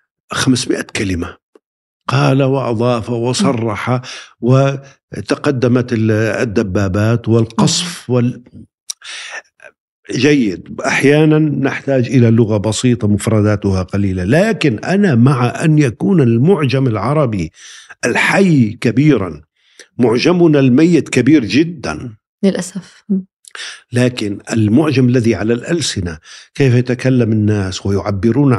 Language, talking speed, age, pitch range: Arabic, 80 wpm, 50-69, 105-135 Hz